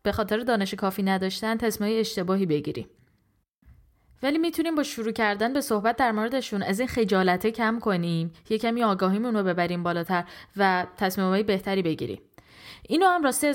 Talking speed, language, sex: 150 wpm, Persian, female